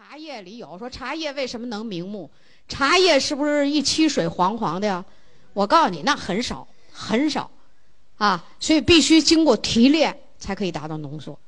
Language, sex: Chinese, female